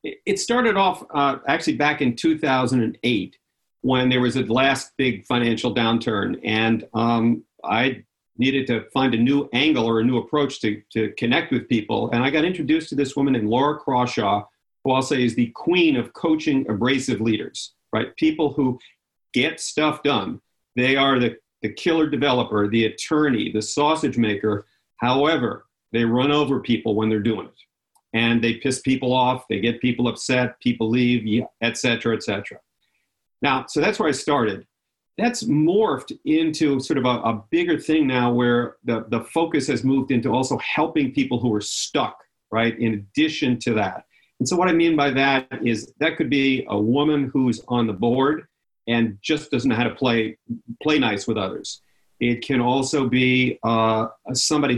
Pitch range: 115-145 Hz